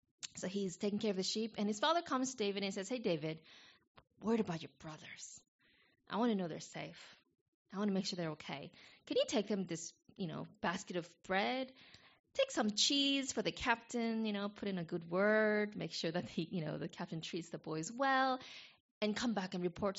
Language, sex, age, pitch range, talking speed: English, female, 20-39, 175-235 Hz, 220 wpm